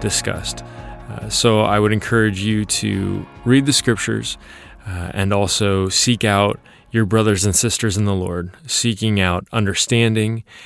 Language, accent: English, American